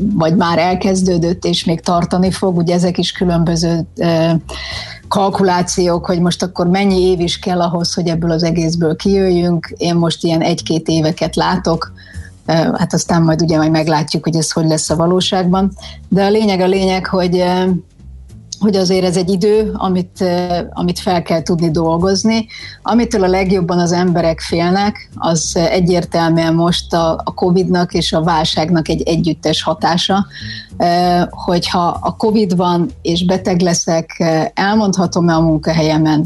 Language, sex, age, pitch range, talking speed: Hungarian, female, 30-49, 160-185 Hz, 140 wpm